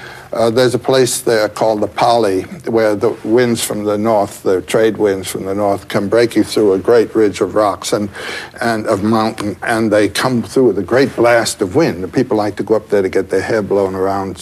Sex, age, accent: male, 60-79, American